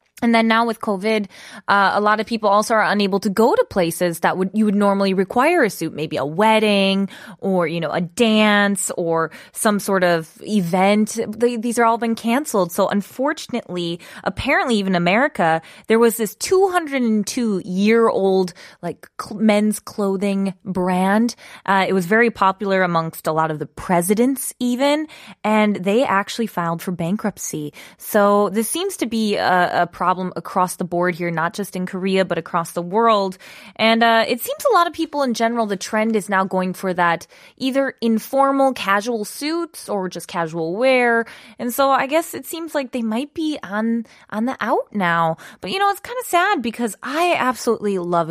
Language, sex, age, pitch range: Korean, female, 20-39, 180-240 Hz